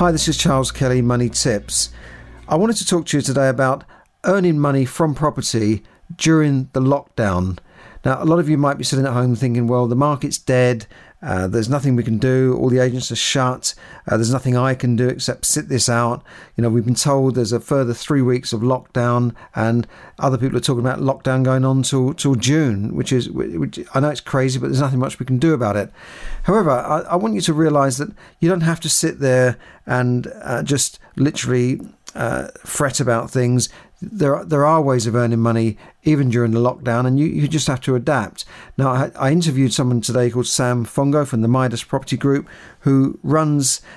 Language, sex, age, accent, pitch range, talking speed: English, male, 50-69, British, 120-145 Hz, 210 wpm